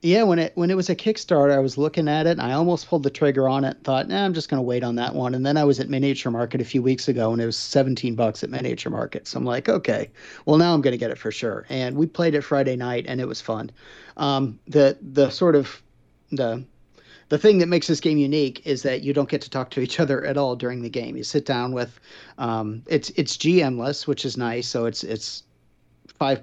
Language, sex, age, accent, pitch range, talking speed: English, male, 40-59, American, 120-145 Hz, 270 wpm